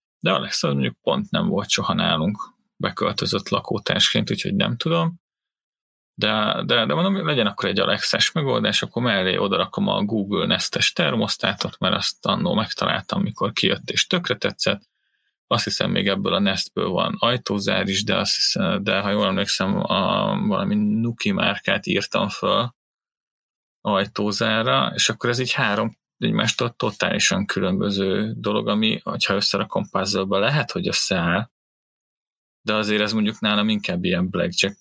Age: 30-49